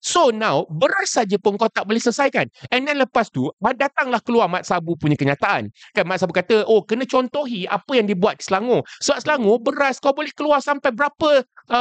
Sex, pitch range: male, 205-285 Hz